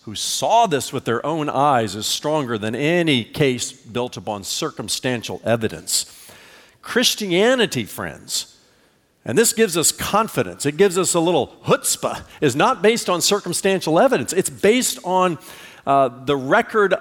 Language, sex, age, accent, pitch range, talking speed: English, male, 50-69, American, 115-185 Hz, 145 wpm